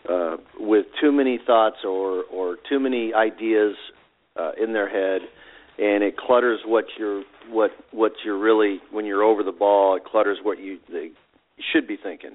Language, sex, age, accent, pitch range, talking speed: English, male, 40-59, American, 95-115 Hz, 175 wpm